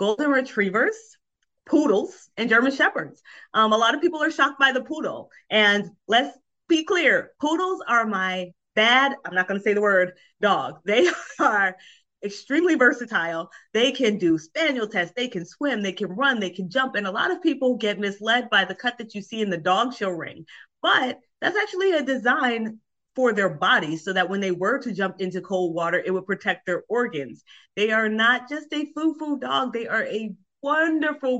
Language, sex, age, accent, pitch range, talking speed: English, female, 30-49, American, 190-255 Hz, 195 wpm